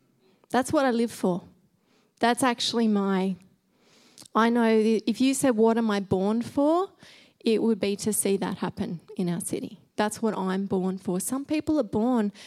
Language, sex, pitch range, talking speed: English, female, 200-230 Hz, 180 wpm